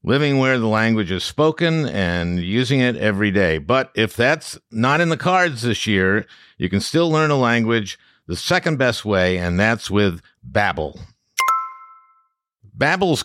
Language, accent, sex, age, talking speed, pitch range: English, American, male, 60-79, 160 wpm, 105-155 Hz